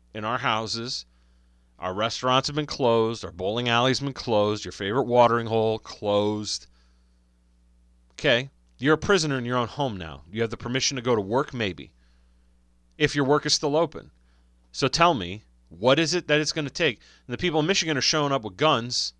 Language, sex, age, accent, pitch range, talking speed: English, male, 30-49, American, 85-145 Hz, 195 wpm